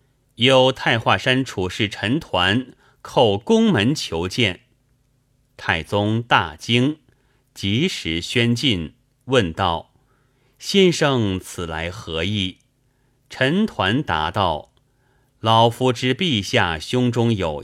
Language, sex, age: Chinese, male, 30-49